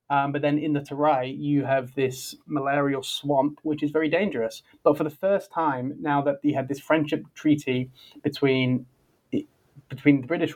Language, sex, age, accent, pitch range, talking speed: English, male, 20-39, British, 130-155 Hz, 175 wpm